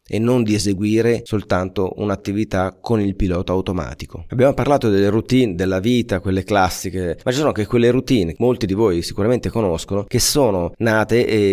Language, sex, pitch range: Italian, male, 95-115 Hz